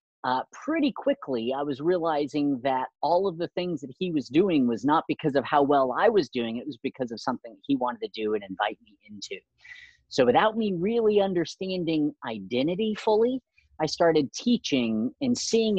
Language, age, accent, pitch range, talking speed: English, 40-59, American, 130-200 Hz, 185 wpm